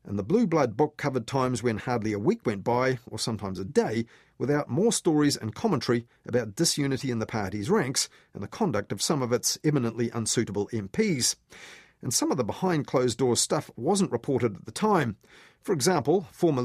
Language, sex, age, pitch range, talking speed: English, male, 40-59, 115-150 Hz, 185 wpm